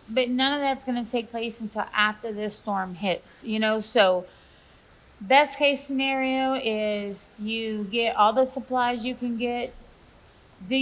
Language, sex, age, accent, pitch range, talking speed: English, female, 30-49, American, 205-245 Hz, 155 wpm